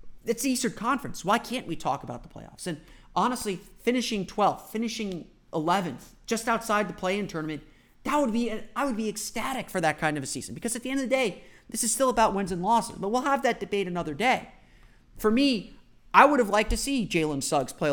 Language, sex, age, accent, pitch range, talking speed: English, male, 30-49, American, 145-220 Hz, 220 wpm